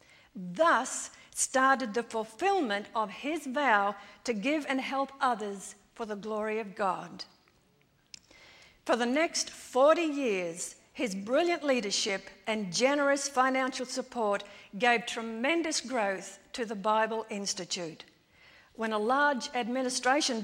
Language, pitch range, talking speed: English, 210-275 Hz, 115 wpm